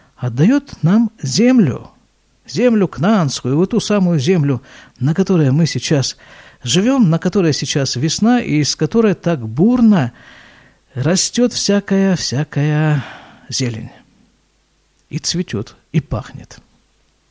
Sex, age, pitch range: male, 50-69, 130-195 Hz